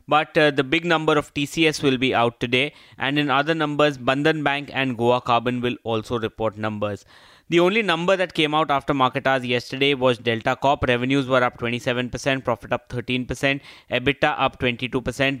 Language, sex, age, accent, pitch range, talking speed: English, male, 20-39, Indian, 125-145 Hz, 185 wpm